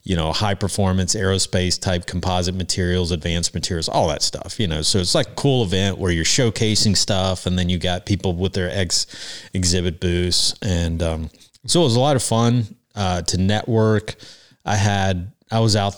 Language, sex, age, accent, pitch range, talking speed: English, male, 30-49, American, 85-105 Hz, 190 wpm